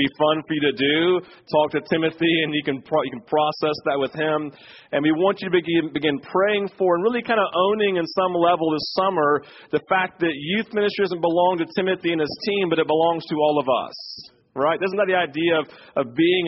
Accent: American